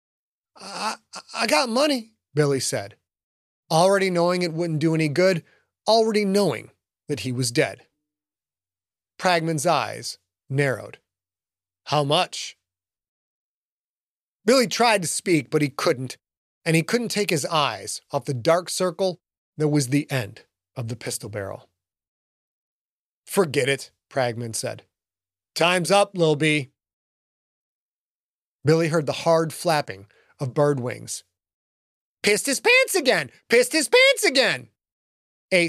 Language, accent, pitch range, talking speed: English, American, 115-180 Hz, 125 wpm